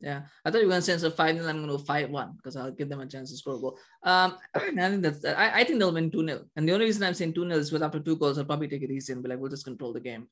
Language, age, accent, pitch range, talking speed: English, 20-39, Indian, 140-190 Hz, 355 wpm